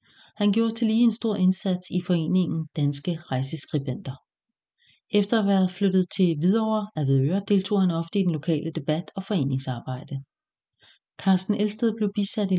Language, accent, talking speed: English, Danish, 160 wpm